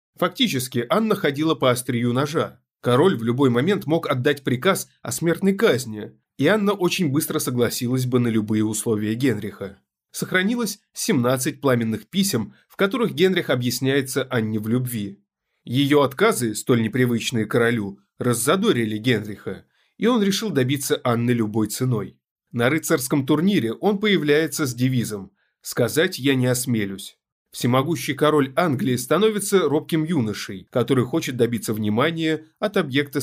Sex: male